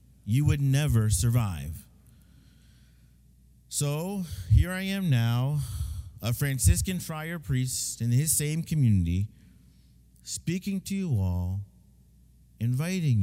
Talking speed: 100 wpm